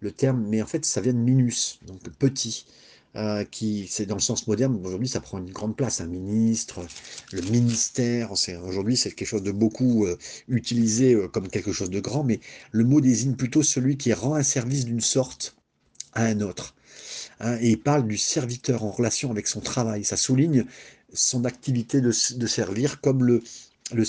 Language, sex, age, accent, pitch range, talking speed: French, male, 50-69, French, 110-145 Hz, 200 wpm